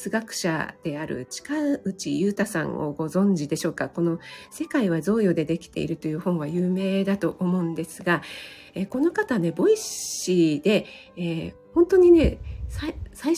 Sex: female